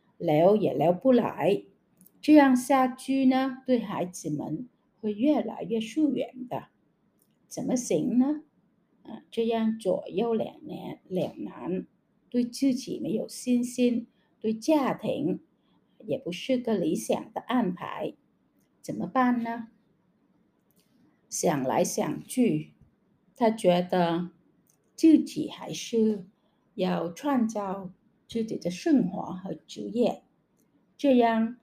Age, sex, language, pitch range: 60-79, female, Chinese, 190-255 Hz